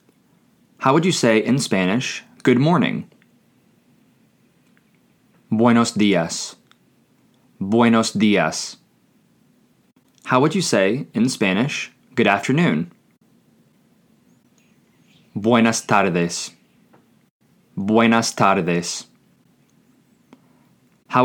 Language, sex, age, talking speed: English, male, 20-39, 70 wpm